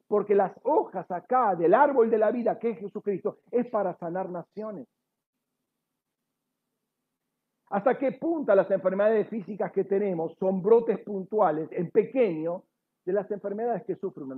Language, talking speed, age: Spanish, 145 wpm, 50-69